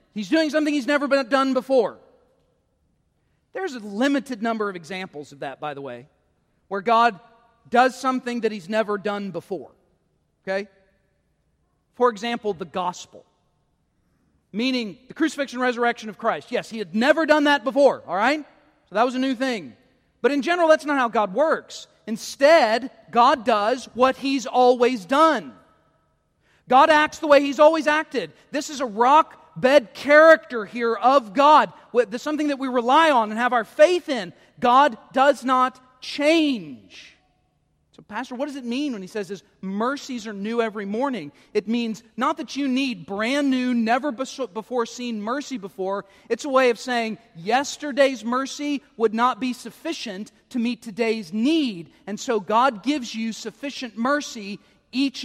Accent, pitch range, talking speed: American, 215-275 Hz, 160 wpm